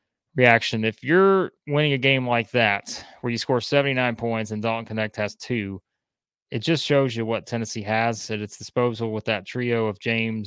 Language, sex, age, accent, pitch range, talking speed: English, male, 20-39, American, 110-125 Hz, 190 wpm